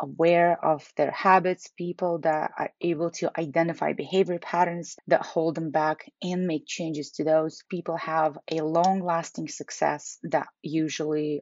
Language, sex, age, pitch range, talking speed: English, female, 20-39, 160-190 Hz, 145 wpm